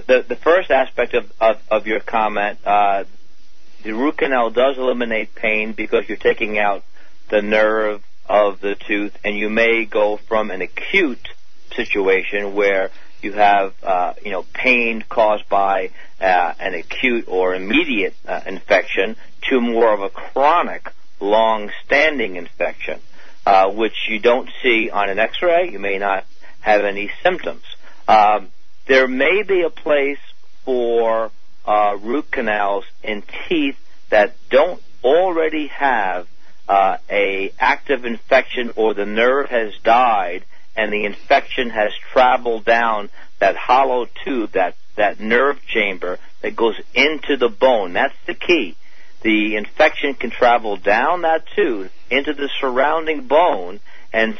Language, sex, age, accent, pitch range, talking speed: English, male, 50-69, American, 105-140 Hz, 140 wpm